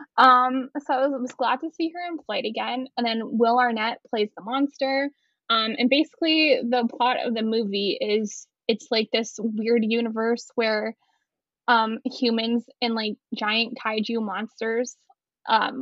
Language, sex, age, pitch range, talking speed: English, female, 10-29, 230-270 Hz, 160 wpm